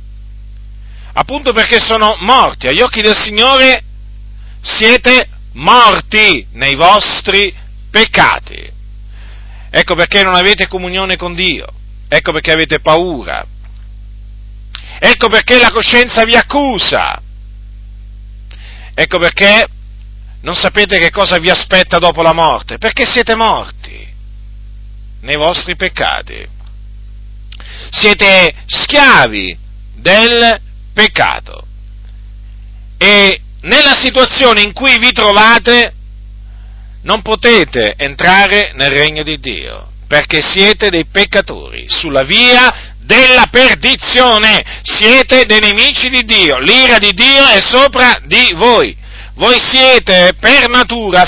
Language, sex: Italian, male